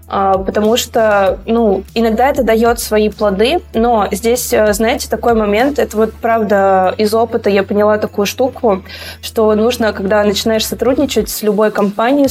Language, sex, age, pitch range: Russian, female, 20-39, 205-230 Hz